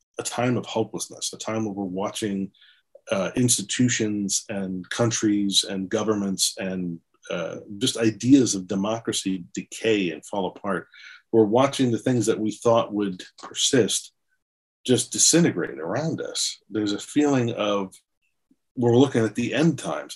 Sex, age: male, 40-59